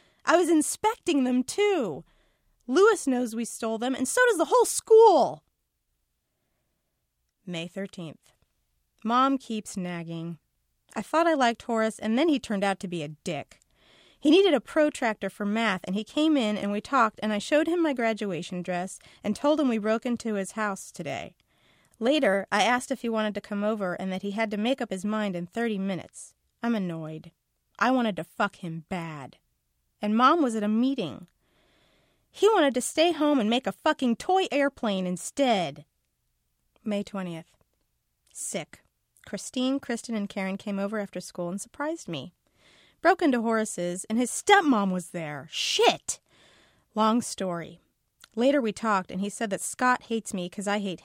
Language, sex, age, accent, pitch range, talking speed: English, female, 30-49, American, 180-250 Hz, 175 wpm